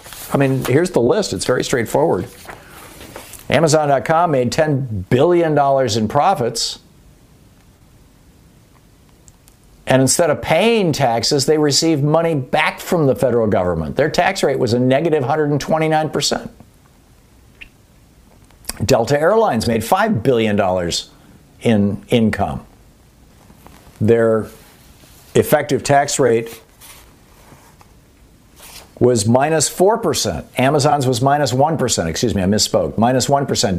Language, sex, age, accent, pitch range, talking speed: English, male, 50-69, American, 115-155 Hz, 105 wpm